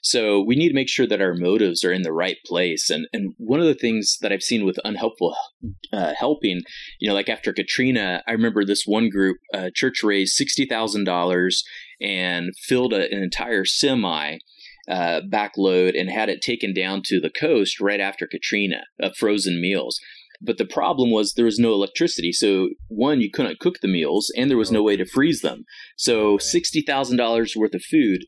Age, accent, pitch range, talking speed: 30-49, American, 95-125 Hz, 195 wpm